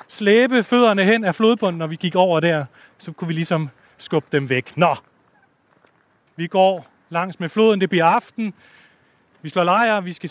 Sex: male